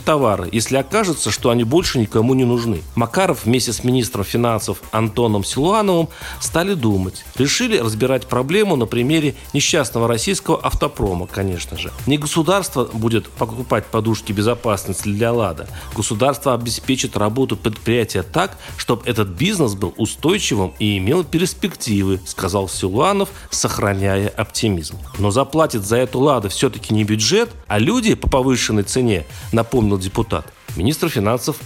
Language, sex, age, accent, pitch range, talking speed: Russian, male, 40-59, native, 105-140 Hz, 135 wpm